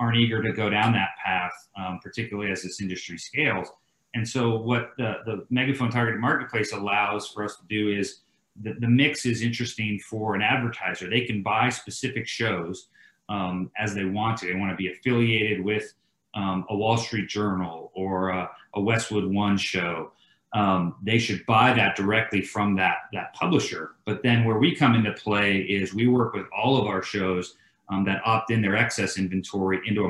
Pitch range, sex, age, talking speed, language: 95-115 Hz, male, 40-59, 190 wpm, English